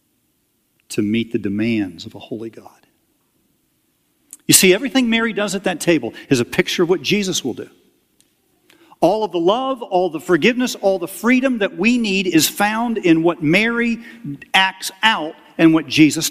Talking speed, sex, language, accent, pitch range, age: 175 wpm, male, English, American, 160-255 Hz, 50-69